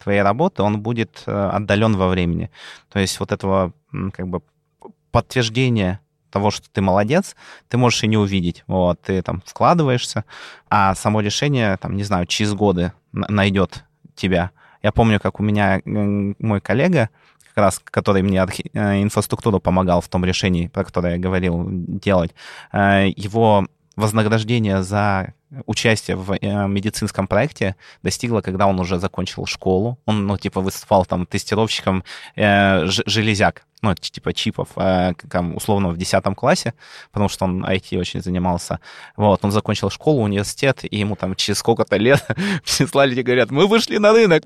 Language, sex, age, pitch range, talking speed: Russian, male, 20-39, 95-120 Hz, 150 wpm